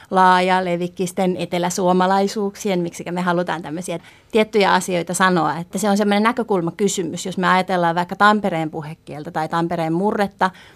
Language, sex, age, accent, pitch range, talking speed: Finnish, female, 30-49, native, 175-215 Hz, 140 wpm